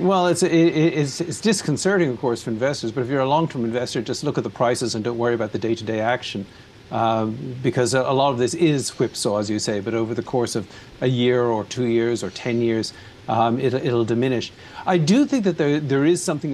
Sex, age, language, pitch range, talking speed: male, 50-69, English, 120-150 Hz, 230 wpm